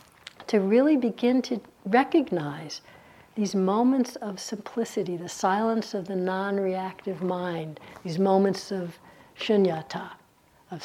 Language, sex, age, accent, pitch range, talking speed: English, female, 60-79, American, 180-250 Hz, 110 wpm